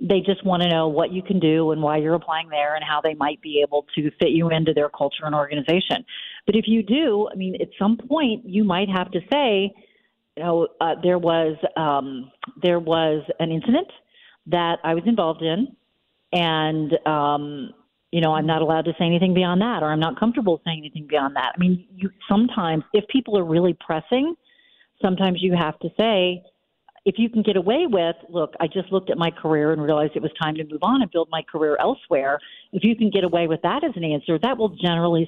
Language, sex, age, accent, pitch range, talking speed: English, female, 40-59, American, 160-210 Hz, 220 wpm